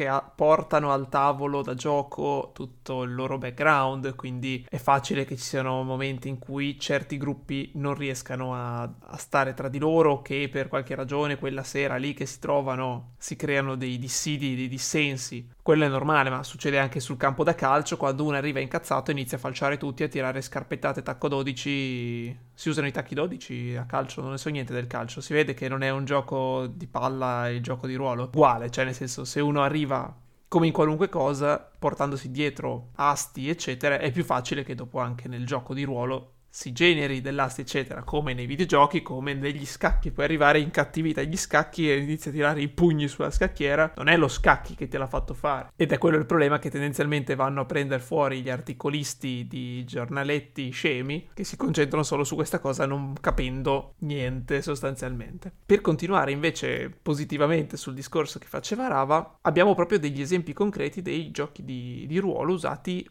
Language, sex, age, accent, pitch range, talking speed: Italian, male, 20-39, native, 130-150 Hz, 190 wpm